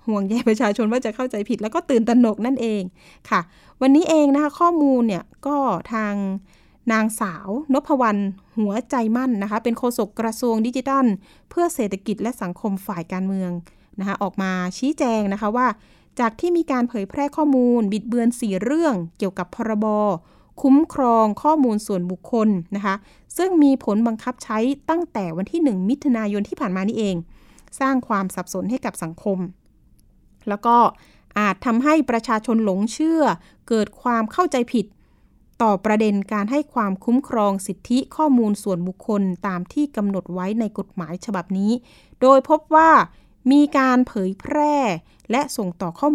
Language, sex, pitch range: Thai, female, 200-265 Hz